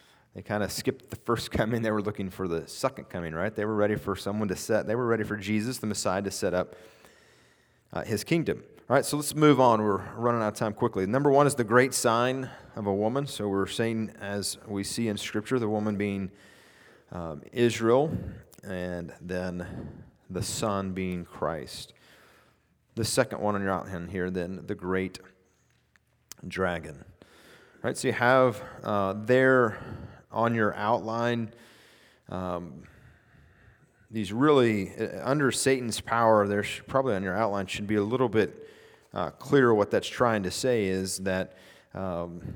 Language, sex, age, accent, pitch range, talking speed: English, male, 30-49, American, 95-120 Hz, 175 wpm